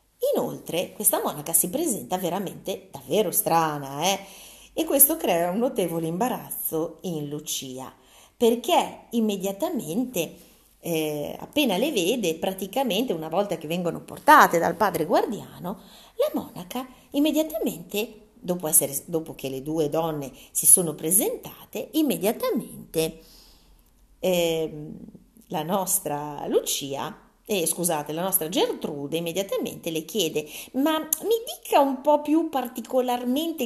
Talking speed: 115 wpm